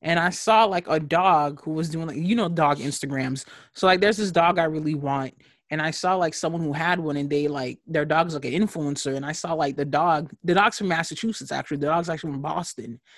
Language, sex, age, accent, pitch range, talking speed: English, male, 20-39, American, 160-210 Hz, 245 wpm